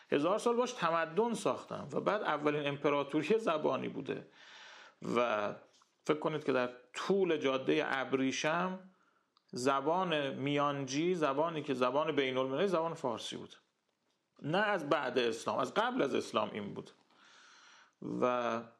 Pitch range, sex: 130-170 Hz, male